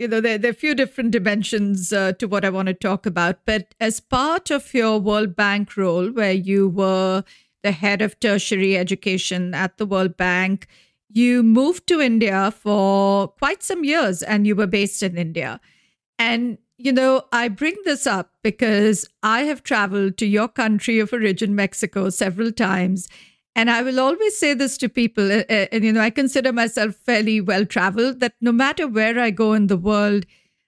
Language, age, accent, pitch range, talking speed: English, 50-69, Indian, 205-265 Hz, 185 wpm